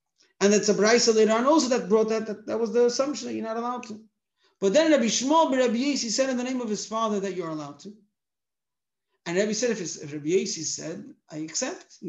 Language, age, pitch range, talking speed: English, 50-69, 205-260 Hz, 255 wpm